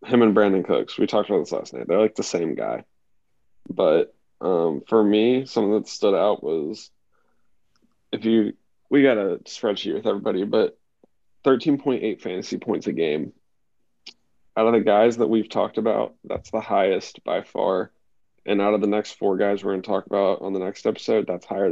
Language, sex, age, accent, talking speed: English, male, 20-39, American, 190 wpm